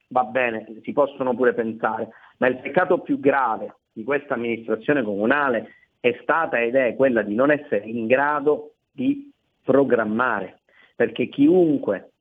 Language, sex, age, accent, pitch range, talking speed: Italian, male, 40-59, native, 115-155 Hz, 145 wpm